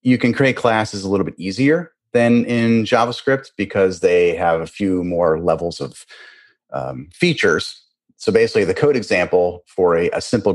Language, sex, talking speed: English, male, 170 wpm